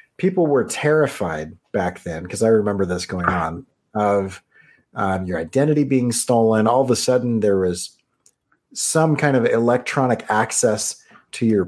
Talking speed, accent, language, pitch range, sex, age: 155 wpm, American, English, 100-130 Hz, male, 30-49